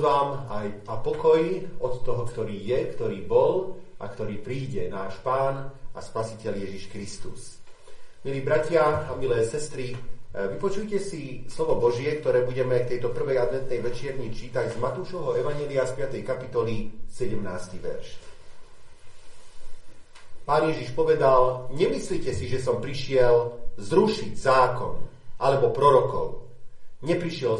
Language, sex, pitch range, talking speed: Slovak, male, 120-170 Hz, 120 wpm